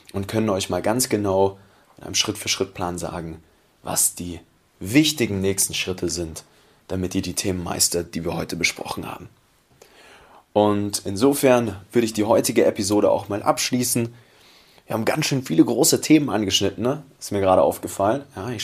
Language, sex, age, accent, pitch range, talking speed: German, male, 20-39, German, 100-125 Hz, 165 wpm